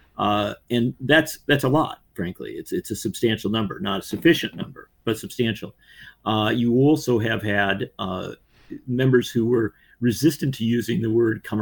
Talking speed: 170 wpm